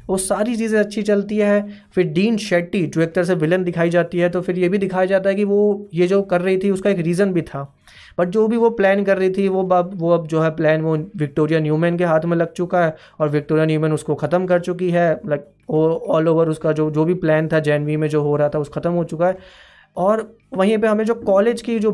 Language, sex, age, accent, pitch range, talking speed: Hindi, male, 20-39, native, 155-185 Hz, 265 wpm